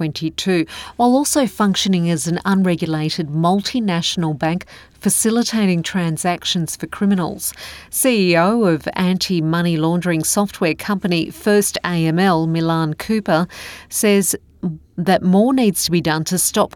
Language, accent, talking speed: English, Australian, 110 wpm